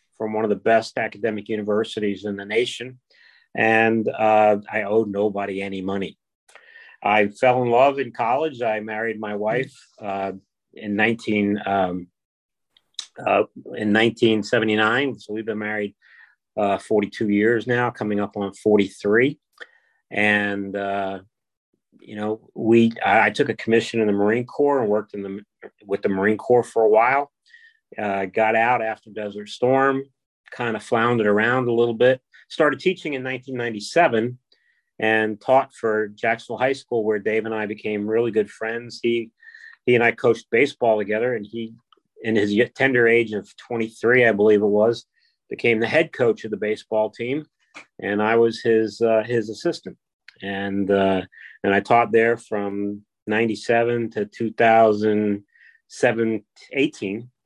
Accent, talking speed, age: American, 155 wpm, 40-59